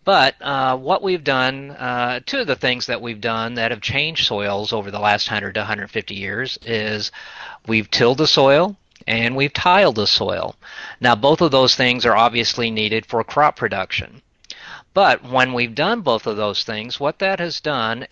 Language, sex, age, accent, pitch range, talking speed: English, male, 50-69, American, 110-130 Hz, 190 wpm